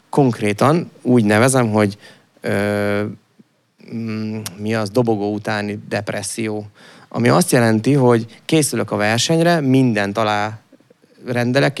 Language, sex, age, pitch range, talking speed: English, male, 30-49, 110-135 Hz, 100 wpm